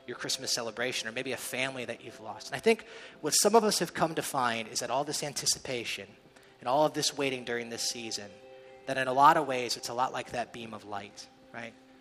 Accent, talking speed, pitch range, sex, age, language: American, 240 wpm, 125-155 Hz, male, 30-49, English